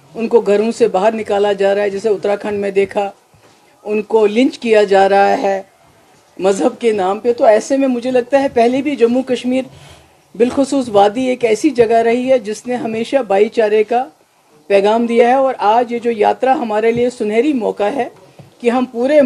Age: 50-69